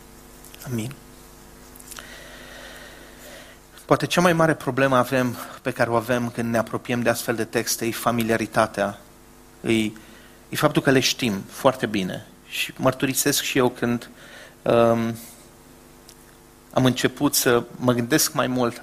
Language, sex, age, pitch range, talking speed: English, male, 40-59, 110-140 Hz, 135 wpm